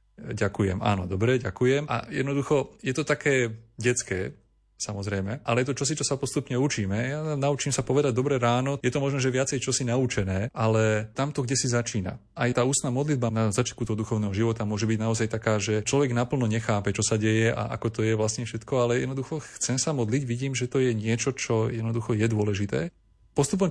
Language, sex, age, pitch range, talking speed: Slovak, male, 30-49, 110-130 Hz, 200 wpm